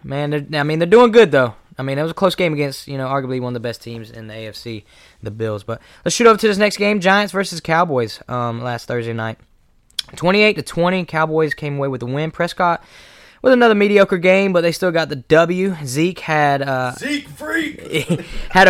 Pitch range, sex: 115-170 Hz, male